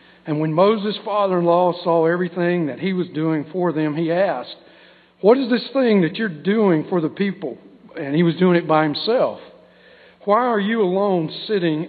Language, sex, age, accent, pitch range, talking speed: English, male, 50-69, American, 150-190 Hz, 180 wpm